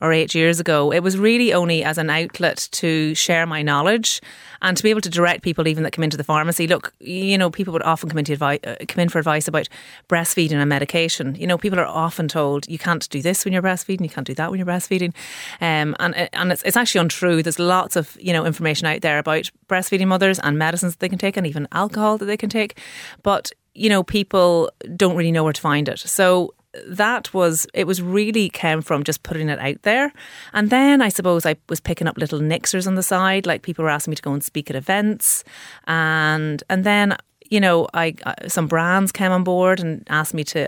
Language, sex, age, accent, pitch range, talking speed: English, female, 30-49, Irish, 150-180 Hz, 235 wpm